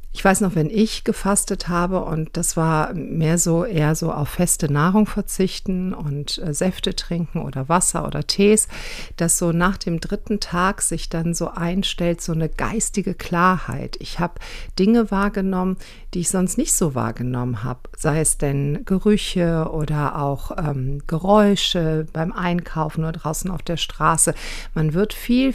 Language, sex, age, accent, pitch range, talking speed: German, female, 50-69, German, 155-190 Hz, 160 wpm